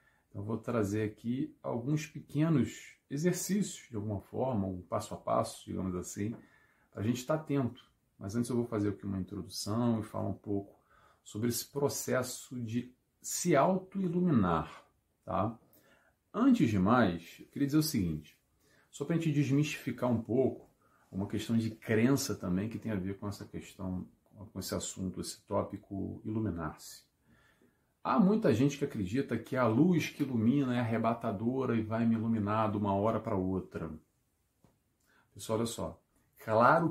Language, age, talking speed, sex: Portuguese, 40-59, 160 wpm, male